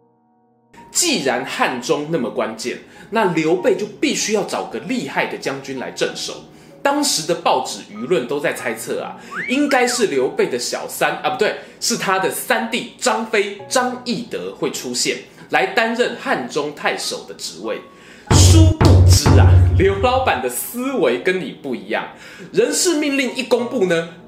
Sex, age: male, 20-39